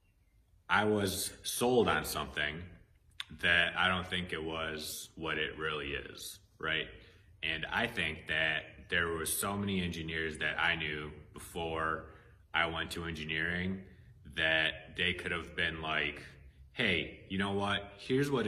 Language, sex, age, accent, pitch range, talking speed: English, male, 30-49, American, 80-100 Hz, 145 wpm